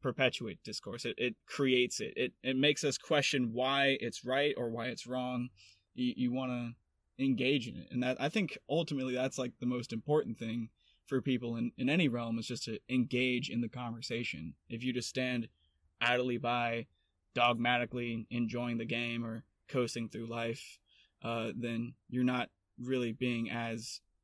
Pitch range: 115-130 Hz